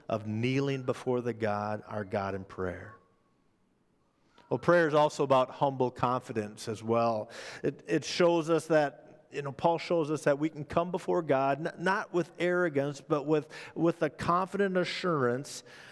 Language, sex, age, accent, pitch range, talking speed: English, male, 50-69, American, 120-155 Hz, 160 wpm